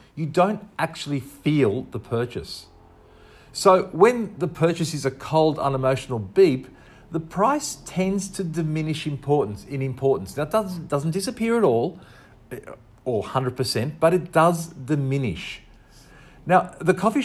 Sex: male